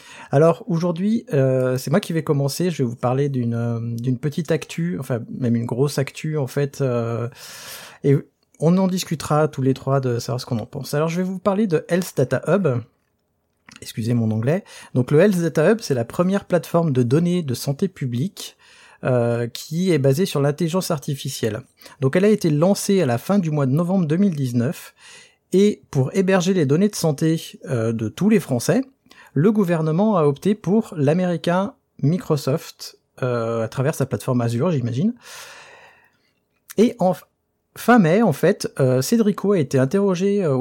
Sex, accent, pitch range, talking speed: male, French, 130-195 Hz, 180 wpm